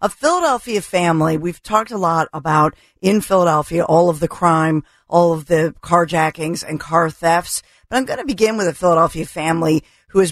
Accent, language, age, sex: American, English, 50-69, female